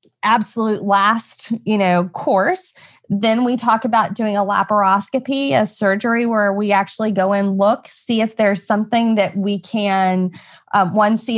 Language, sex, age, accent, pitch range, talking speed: English, female, 20-39, American, 175-210 Hz, 160 wpm